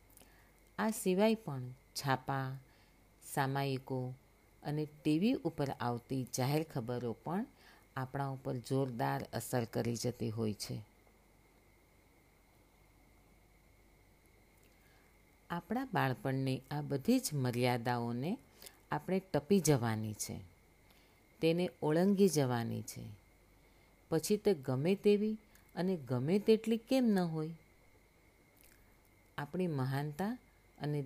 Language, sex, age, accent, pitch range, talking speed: Gujarati, female, 50-69, native, 110-160 Hz, 60 wpm